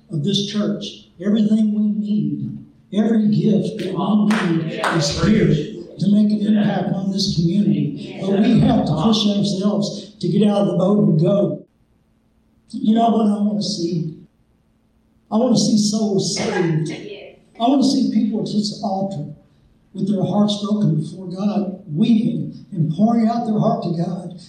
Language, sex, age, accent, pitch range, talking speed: English, male, 60-79, American, 185-215 Hz, 170 wpm